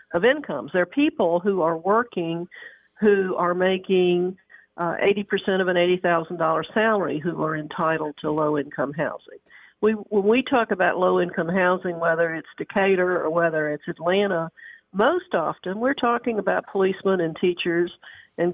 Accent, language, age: American, English, 50-69